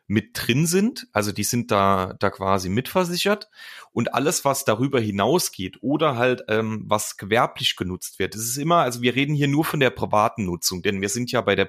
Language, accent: German, German